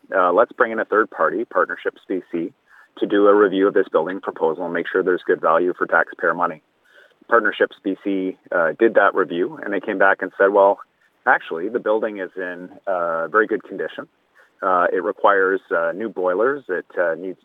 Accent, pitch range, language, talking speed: American, 95-130 Hz, English, 195 wpm